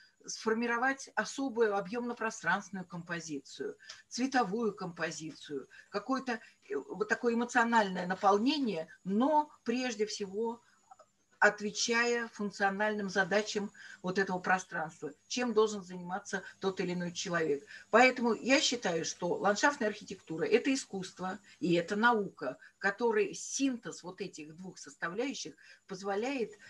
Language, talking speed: Russian, 105 wpm